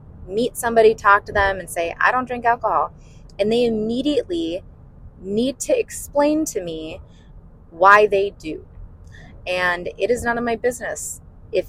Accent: American